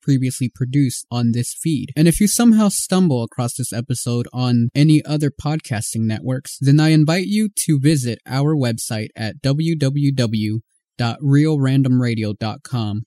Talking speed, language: 130 wpm, English